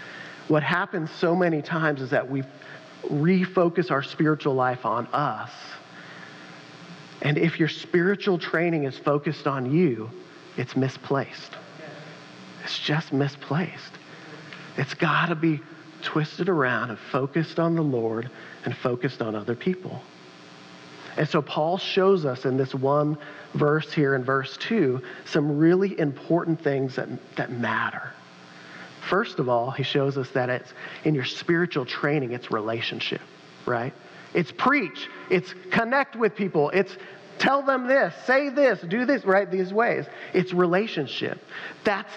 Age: 40-59